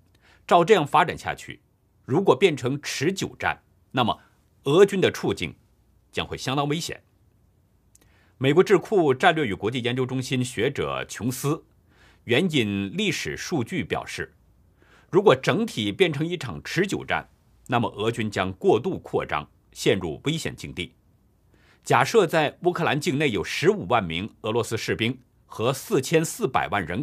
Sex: male